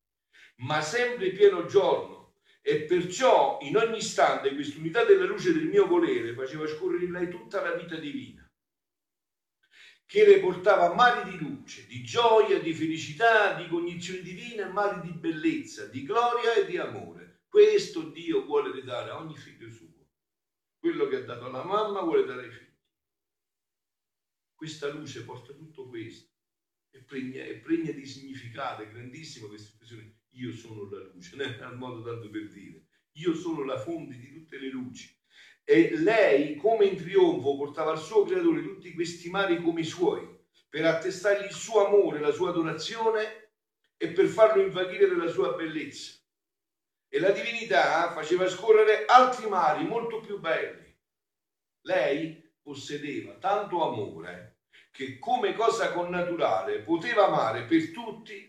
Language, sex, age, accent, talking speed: Italian, male, 50-69, native, 150 wpm